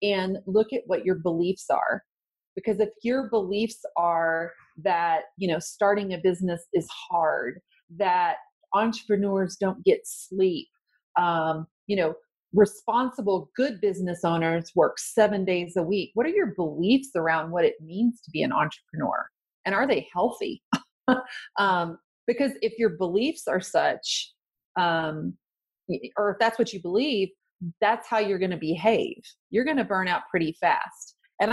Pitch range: 175-235 Hz